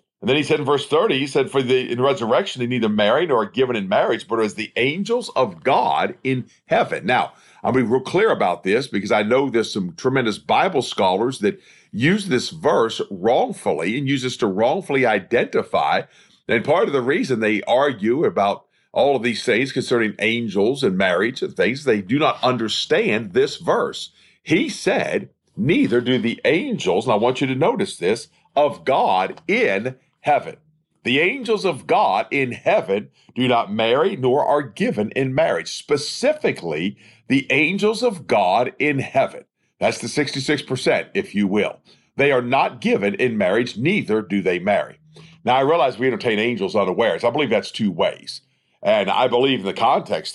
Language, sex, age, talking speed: English, male, 50-69, 180 wpm